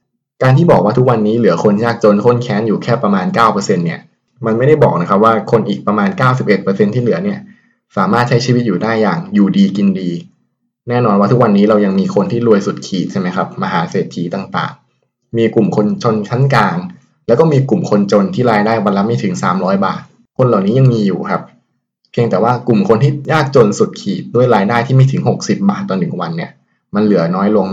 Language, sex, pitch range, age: Thai, male, 100-140 Hz, 20-39